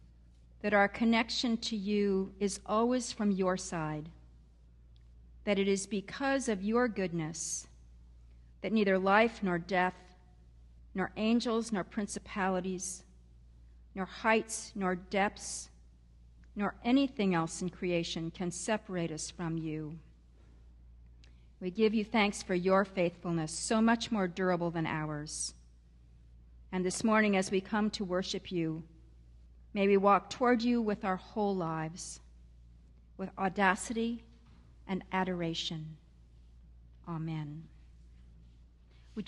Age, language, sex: 50-69, English, female